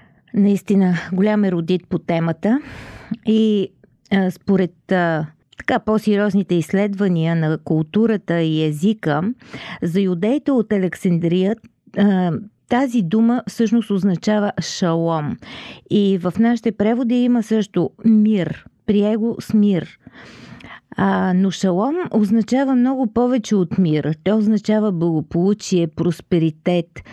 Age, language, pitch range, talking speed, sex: 40-59, Bulgarian, 175-225 Hz, 110 wpm, female